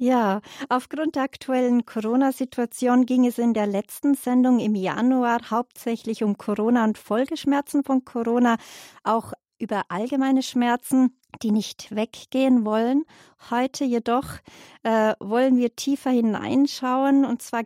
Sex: female